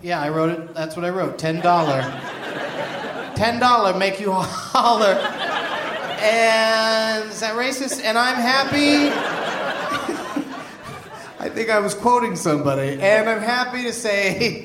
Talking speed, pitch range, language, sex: 125 wpm, 165-240 Hz, English, male